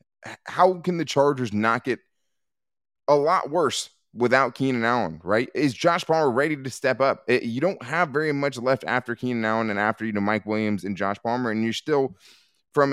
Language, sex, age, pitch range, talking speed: English, male, 20-39, 110-135 Hz, 195 wpm